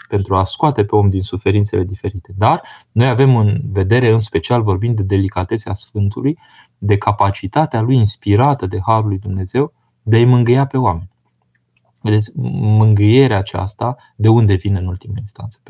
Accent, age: native, 20-39